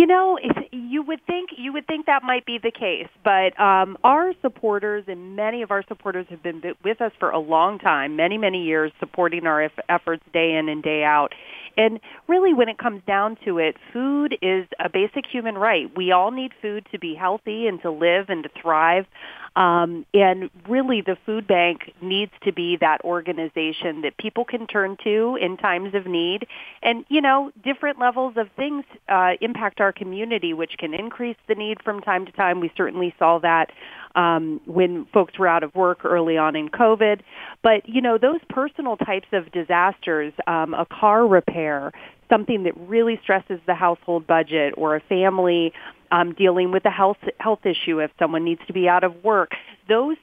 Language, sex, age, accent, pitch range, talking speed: English, female, 30-49, American, 175-235 Hz, 190 wpm